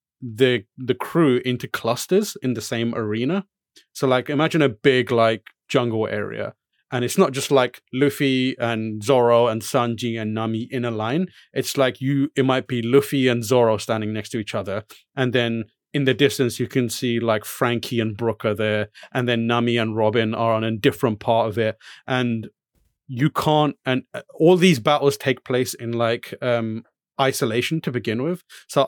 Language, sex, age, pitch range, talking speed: English, male, 30-49, 115-135 Hz, 185 wpm